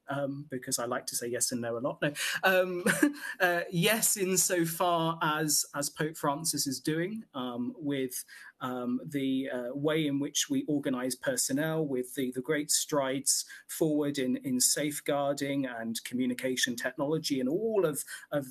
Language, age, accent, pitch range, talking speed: English, 30-49, British, 140-185 Hz, 165 wpm